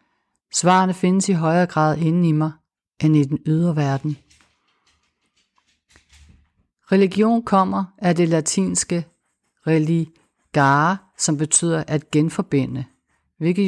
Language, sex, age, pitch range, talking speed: Danish, female, 60-79, 145-170 Hz, 105 wpm